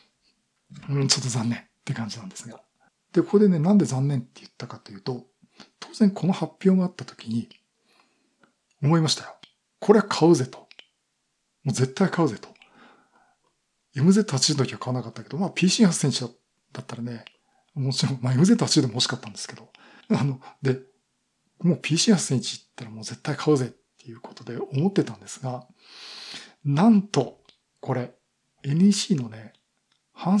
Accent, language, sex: native, Japanese, male